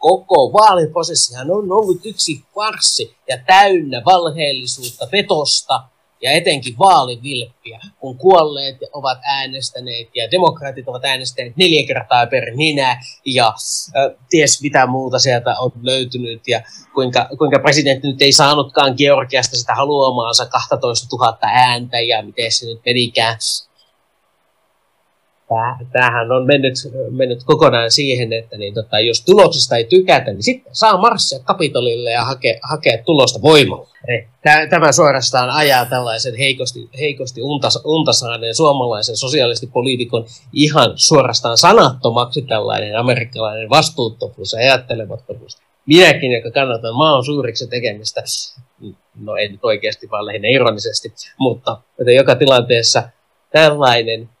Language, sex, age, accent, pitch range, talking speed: Finnish, male, 30-49, native, 120-150 Hz, 120 wpm